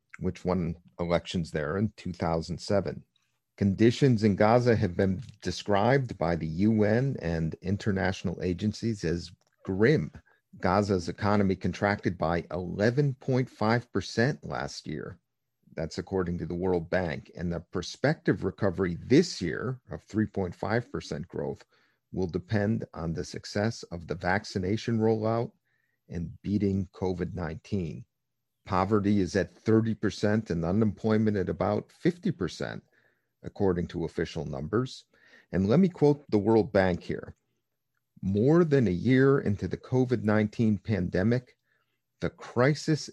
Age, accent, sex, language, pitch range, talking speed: 50-69, American, male, English, 90-115 Hz, 120 wpm